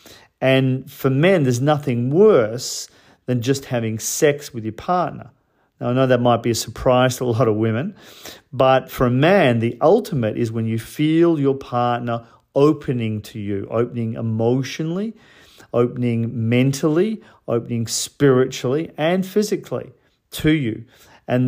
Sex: male